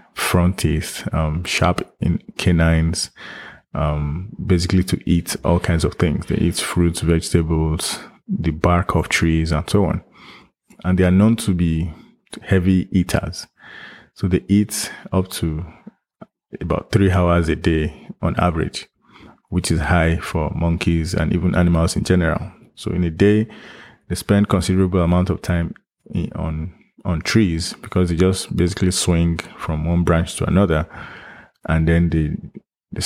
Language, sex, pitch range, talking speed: English, male, 85-95 Hz, 145 wpm